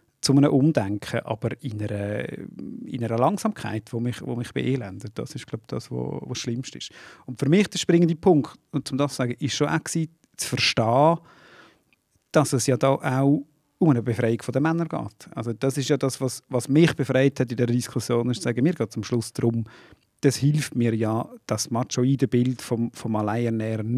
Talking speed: 200 wpm